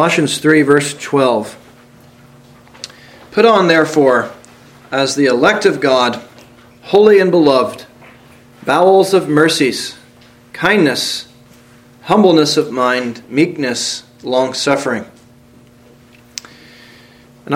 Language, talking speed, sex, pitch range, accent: English, 85 wpm, male, 120-155 Hz, American